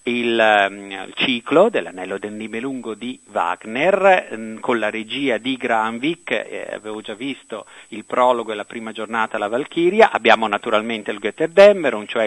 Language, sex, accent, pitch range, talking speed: Italian, male, native, 110-145 Hz, 150 wpm